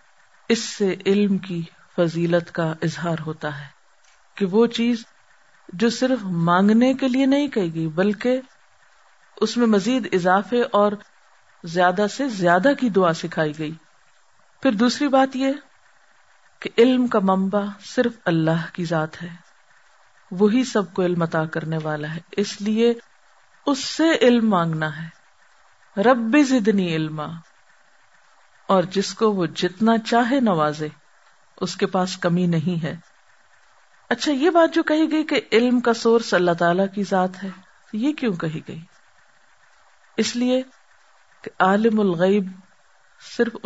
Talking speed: 135 wpm